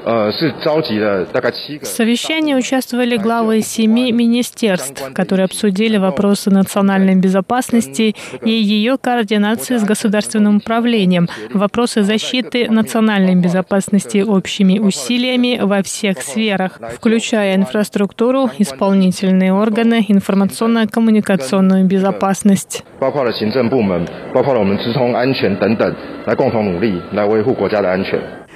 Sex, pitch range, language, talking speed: male, 195-240 Hz, Russian, 65 wpm